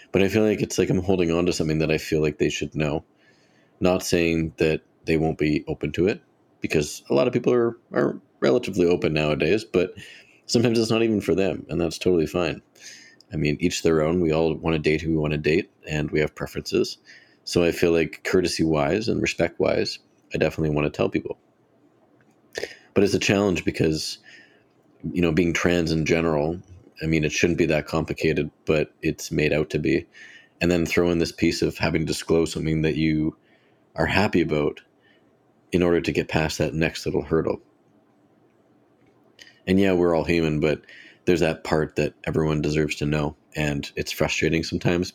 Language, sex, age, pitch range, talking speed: English, male, 30-49, 75-85 Hz, 195 wpm